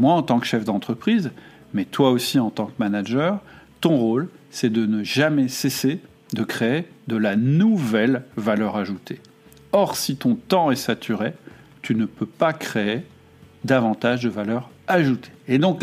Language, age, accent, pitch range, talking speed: French, 50-69, French, 110-150 Hz, 165 wpm